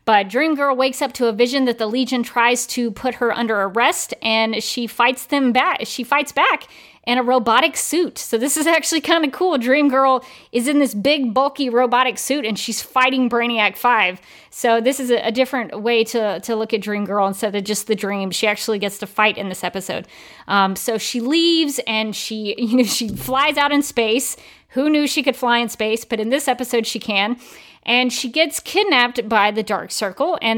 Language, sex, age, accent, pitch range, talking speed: English, female, 40-59, American, 210-260 Hz, 220 wpm